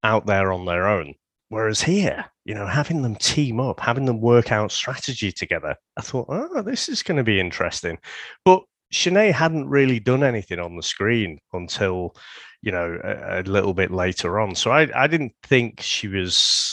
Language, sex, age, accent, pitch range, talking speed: English, male, 30-49, British, 100-145 Hz, 190 wpm